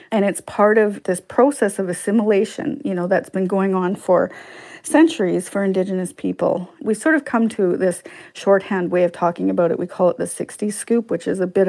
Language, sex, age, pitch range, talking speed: English, female, 40-59, 180-215 Hz, 210 wpm